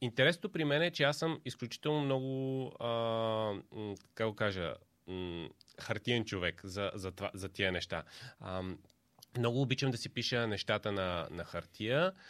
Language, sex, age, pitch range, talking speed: Bulgarian, male, 30-49, 100-135 Hz, 135 wpm